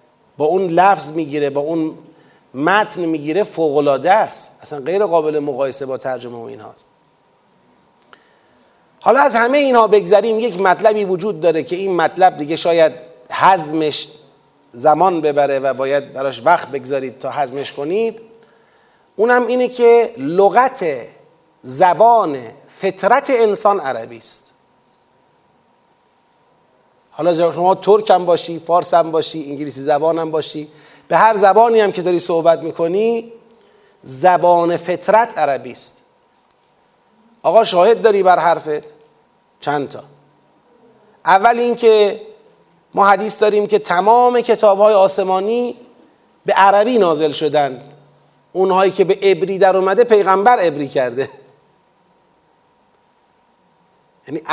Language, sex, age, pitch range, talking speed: Persian, male, 40-59, 155-220 Hz, 120 wpm